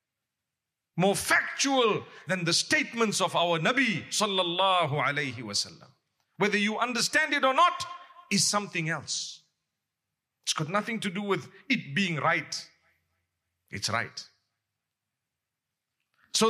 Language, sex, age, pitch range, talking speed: English, male, 50-69, 170-275 Hz, 115 wpm